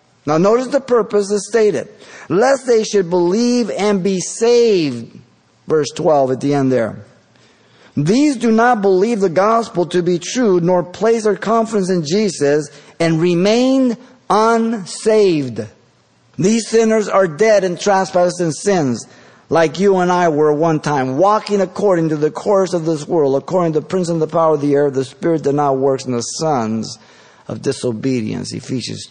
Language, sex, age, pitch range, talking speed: English, male, 50-69, 145-200 Hz, 170 wpm